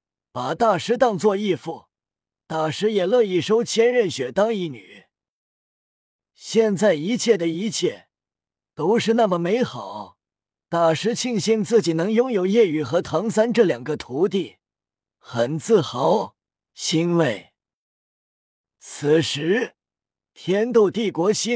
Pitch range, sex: 155-220 Hz, male